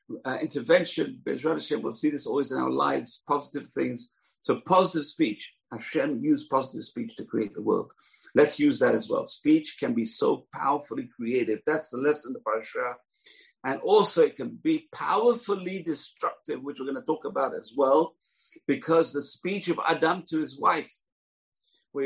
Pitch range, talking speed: 145-215 Hz, 170 wpm